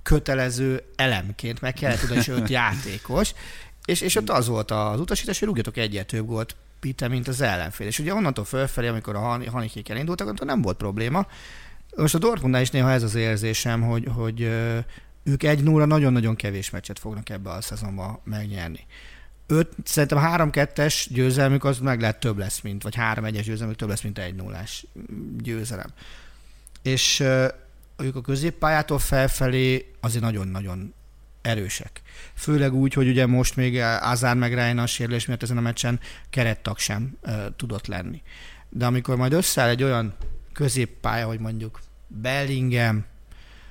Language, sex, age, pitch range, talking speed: Hungarian, male, 40-59, 105-135 Hz, 155 wpm